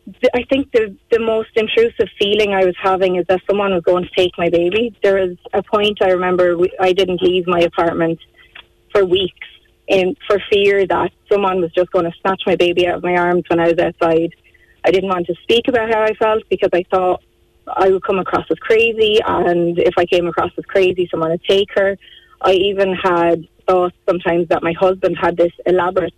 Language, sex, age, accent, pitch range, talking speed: English, female, 20-39, Irish, 175-200 Hz, 215 wpm